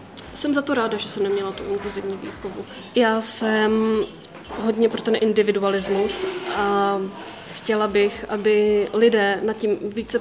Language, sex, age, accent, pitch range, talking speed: Czech, female, 20-39, native, 210-225 Hz, 145 wpm